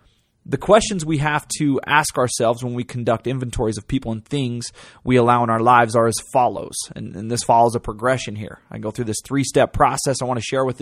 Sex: male